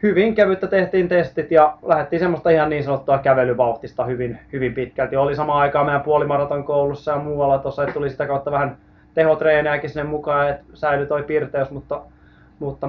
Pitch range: 135-165 Hz